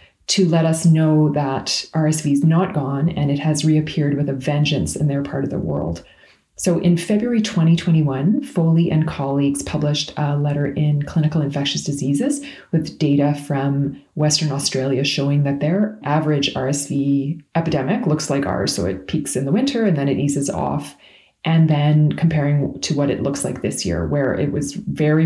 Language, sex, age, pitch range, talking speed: English, female, 30-49, 140-165 Hz, 180 wpm